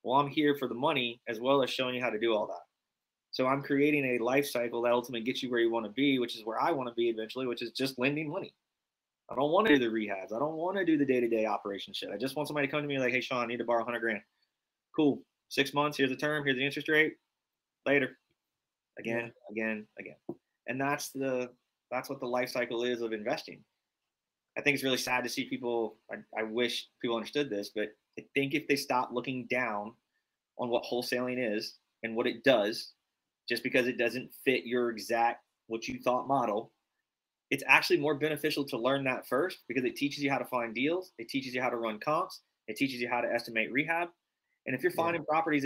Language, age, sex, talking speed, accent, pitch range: English, 20-39, male, 235 wpm, American, 120-145 Hz